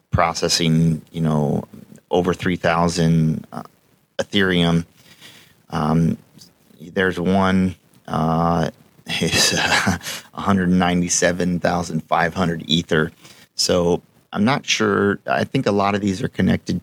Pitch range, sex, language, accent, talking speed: 80-90 Hz, male, English, American, 95 wpm